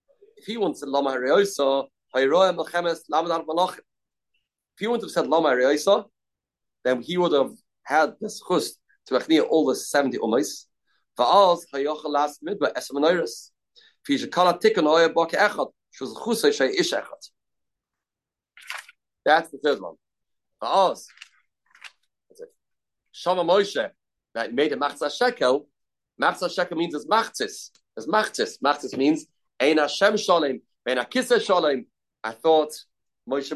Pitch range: 145-210 Hz